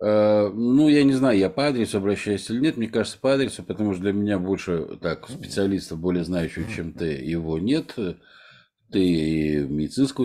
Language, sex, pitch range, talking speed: Russian, male, 90-125 Hz, 170 wpm